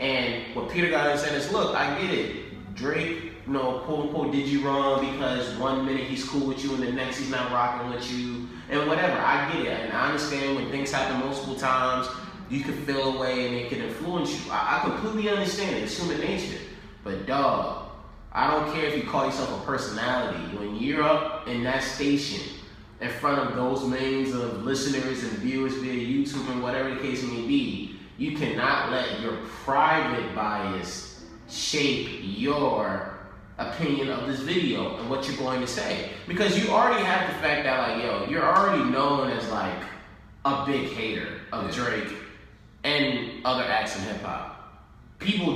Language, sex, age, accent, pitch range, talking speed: English, male, 20-39, American, 120-140 Hz, 190 wpm